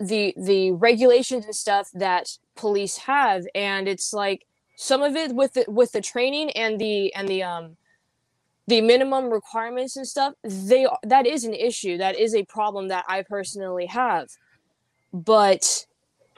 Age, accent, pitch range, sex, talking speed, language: 20-39, American, 205-255 Hz, female, 155 wpm, English